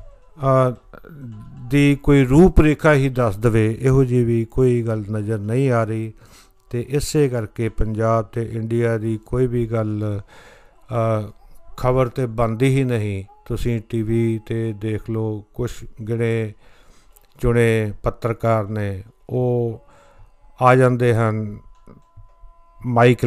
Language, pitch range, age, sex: Punjabi, 110-125 Hz, 50-69, male